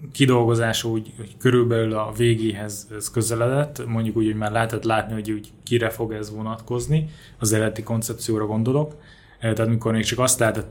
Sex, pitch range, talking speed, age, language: male, 110-120 Hz, 165 wpm, 20-39, Hungarian